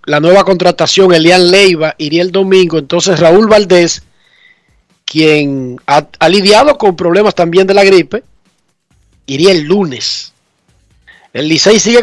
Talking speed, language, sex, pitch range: 135 wpm, Spanish, male, 165-210 Hz